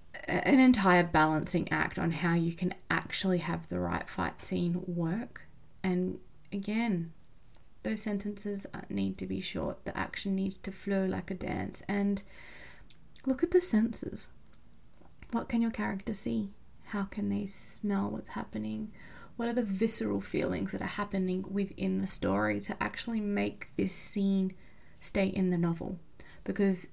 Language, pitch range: English, 175-215 Hz